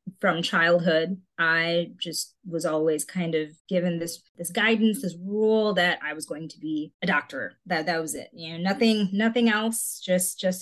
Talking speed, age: 185 wpm, 20-39